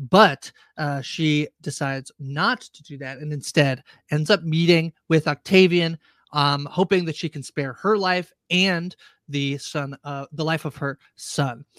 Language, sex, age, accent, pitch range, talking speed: English, male, 30-49, American, 145-180 Hz, 165 wpm